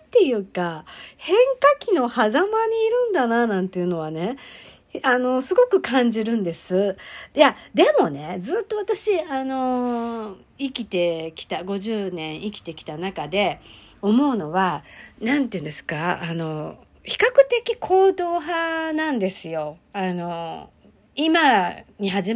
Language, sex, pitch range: Japanese, female, 180-275 Hz